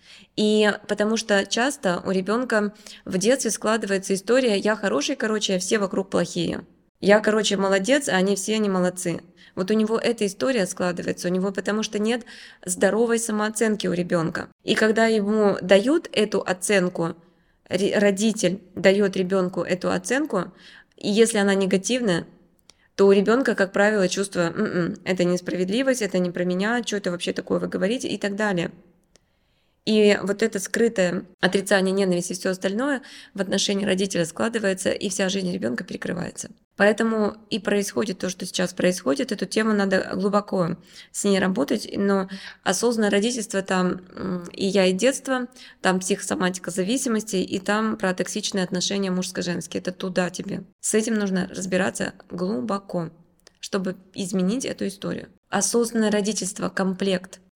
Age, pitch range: 20-39, 185-215 Hz